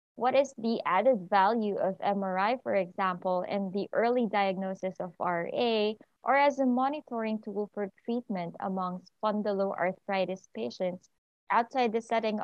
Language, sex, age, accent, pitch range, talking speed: English, female, 20-39, Filipino, 190-245 Hz, 135 wpm